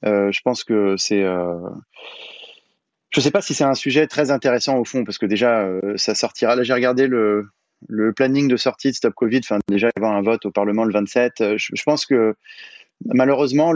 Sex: male